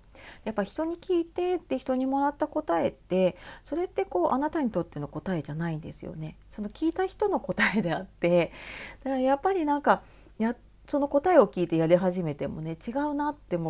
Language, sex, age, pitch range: Japanese, female, 40-59, 165-280 Hz